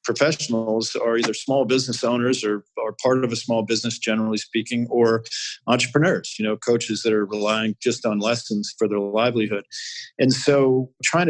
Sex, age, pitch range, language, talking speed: male, 50-69, 110-125 Hz, English, 170 wpm